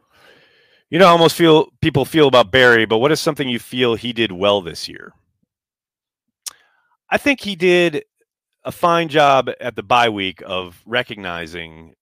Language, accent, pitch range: English, American, 90-130 Hz